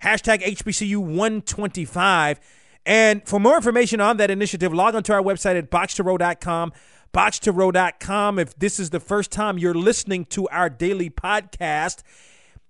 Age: 30-49